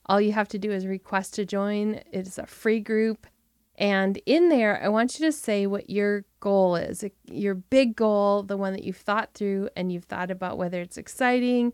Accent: American